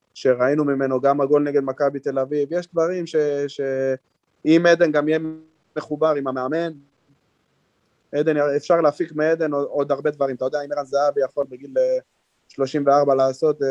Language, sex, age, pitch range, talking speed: Hebrew, male, 20-39, 135-165 Hz, 155 wpm